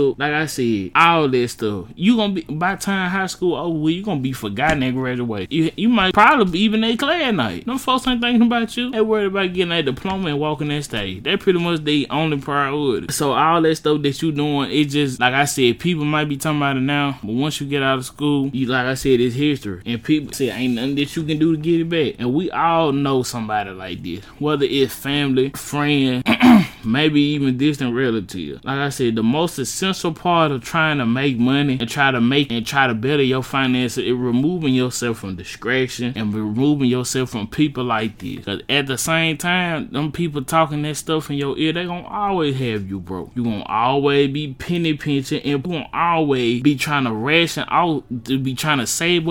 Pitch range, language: 125-160 Hz, English